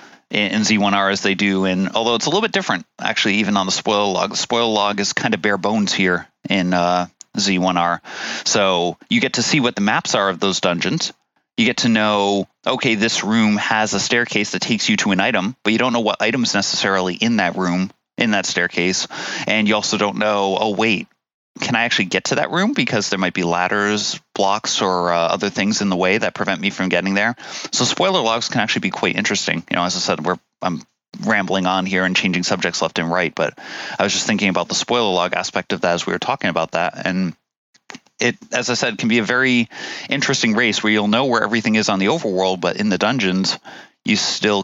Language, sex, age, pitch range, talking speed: English, male, 30-49, 95-110 Hz, 230 wpm